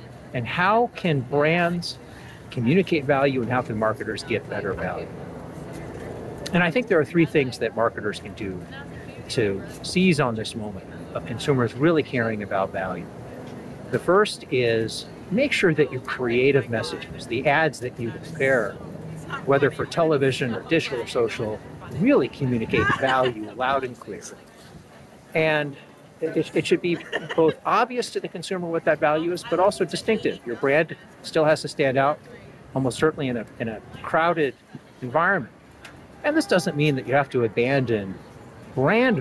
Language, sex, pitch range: English, male, 120-165 Hz